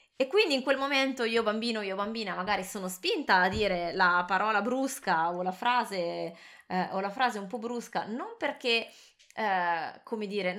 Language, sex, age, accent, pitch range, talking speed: Italian, female, 20-39, native, 185-235 Hz, 160 wpm